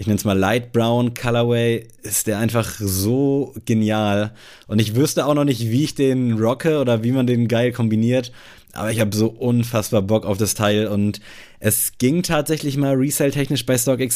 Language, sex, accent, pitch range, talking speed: German, male, German, 105-125 Hz, 190 wpm